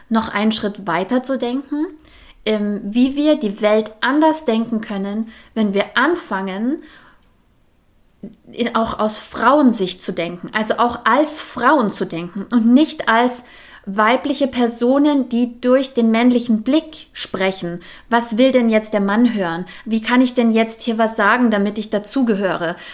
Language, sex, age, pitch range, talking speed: German, female, 20-39, 210-255 Hz, 145 wpm